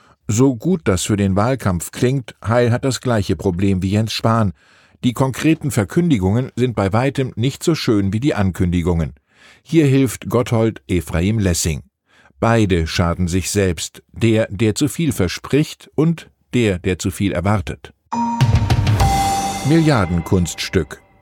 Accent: German